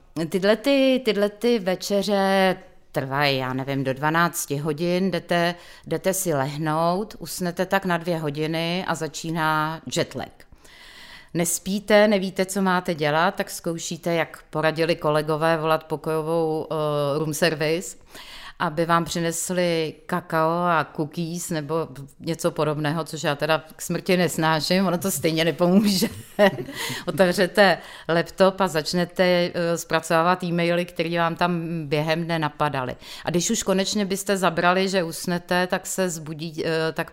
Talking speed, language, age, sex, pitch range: 130 wpm, Czech, 30-49, female, 155-180 Hz